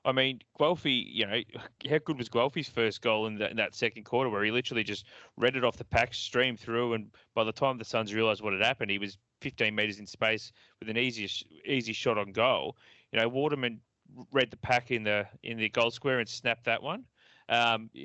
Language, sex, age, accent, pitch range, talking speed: English, male, 30-49, Australian, 110-130 Hz, 225 wpm